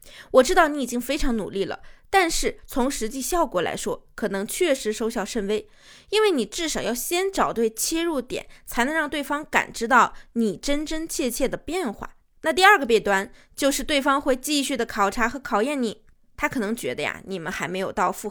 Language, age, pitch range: Chinese, 20-39, 215-290 Hz